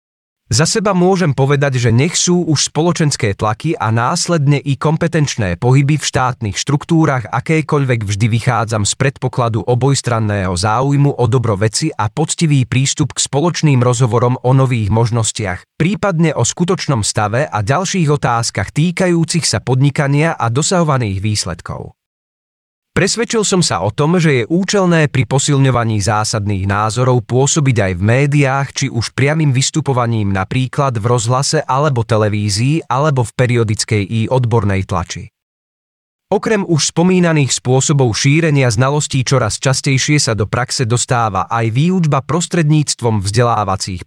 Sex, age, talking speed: male, 40-59, 130 wpm